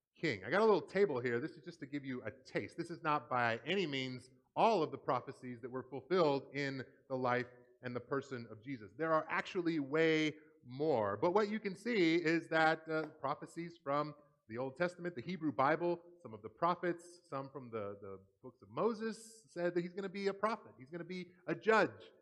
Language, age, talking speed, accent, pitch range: English, 30-49, 220 wpm, American, 125-170 Hz